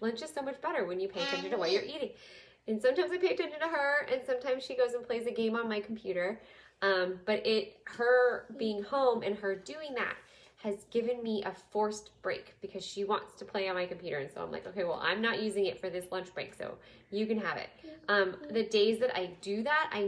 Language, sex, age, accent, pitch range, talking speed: English, female, 10-29, American, 195-245 Hz, 245 wpm